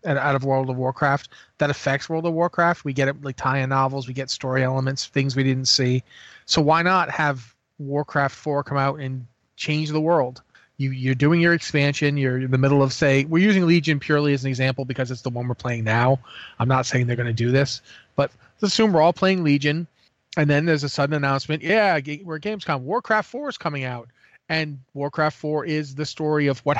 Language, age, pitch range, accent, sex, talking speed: English, 30-49, 135-160 Hz, American, male, 225 wpm